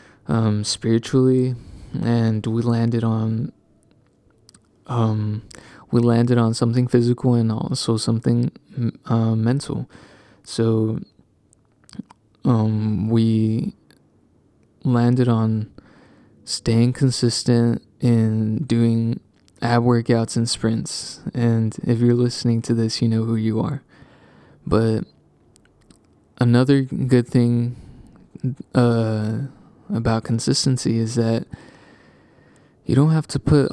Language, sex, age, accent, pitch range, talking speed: English, male, 20-39, American, 115-125 Hz, 100 wpm